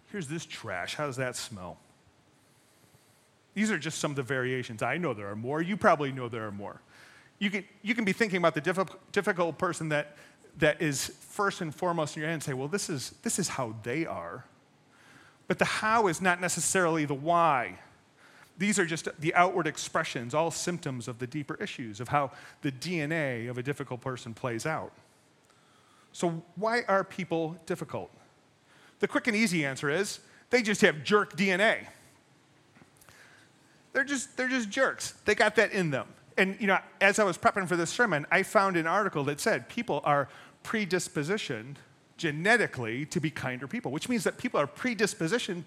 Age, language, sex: 30-49, English, male